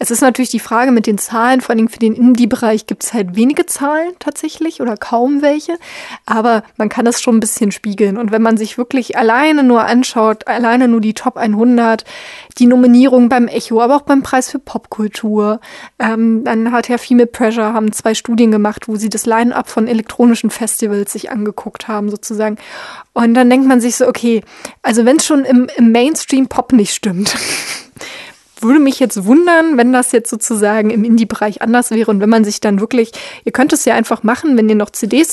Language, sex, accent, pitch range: German, female, German, 220-255 Hz